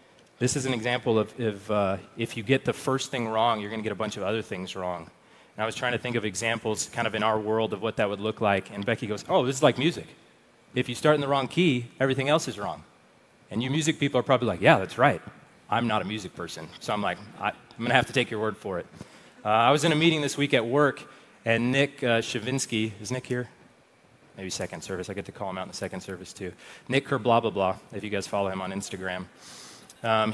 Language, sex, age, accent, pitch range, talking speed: English, male, 30-49, American, 110-135 Hz, 265 wpm